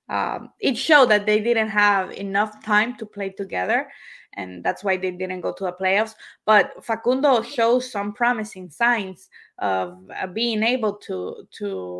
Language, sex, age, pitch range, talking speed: English, female, 20-39, 190-220 Hz, 165 wpm